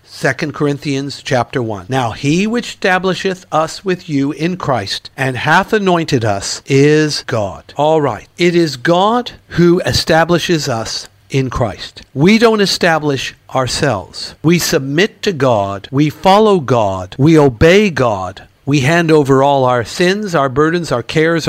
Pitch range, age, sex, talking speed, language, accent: 125-175 Hz, 60-79, male, 150 wpm, English, American